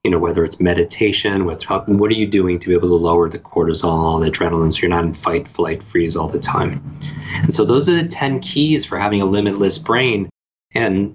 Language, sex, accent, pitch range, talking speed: English, male, American, 85-100 Hz, 220 wpm